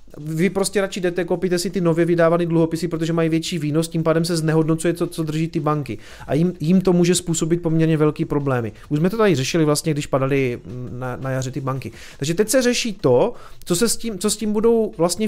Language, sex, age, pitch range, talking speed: Czech, male, 30-49, 150-185 Hz, 230 wpm